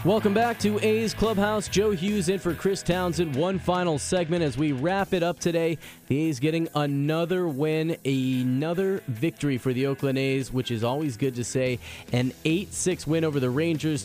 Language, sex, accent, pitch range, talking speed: English, male, American, 135-180 Hz, 185 wpm